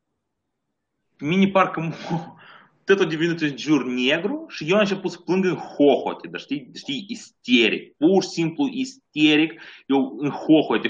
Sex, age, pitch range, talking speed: male, 20-39, 110-170 Hz, 155 wpm